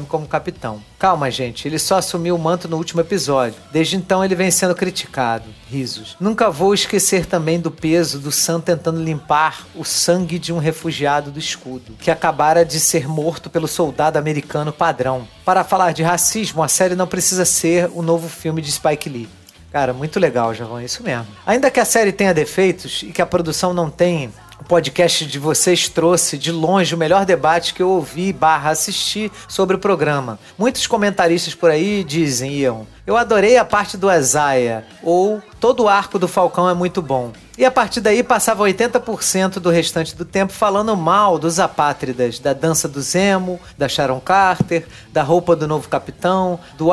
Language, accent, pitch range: Portuguese, Brazilian, 150-185 Hz